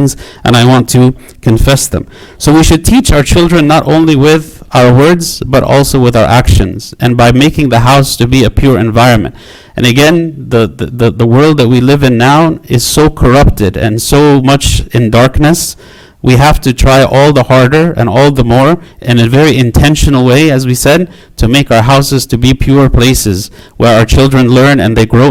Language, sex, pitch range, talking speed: English, male, 120-140 Hz, 200 wpm